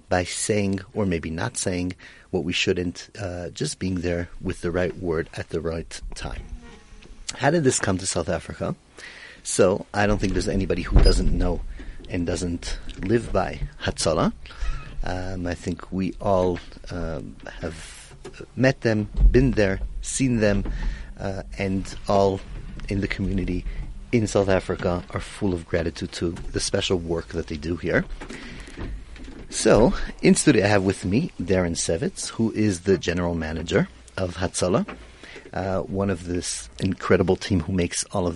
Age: 30-49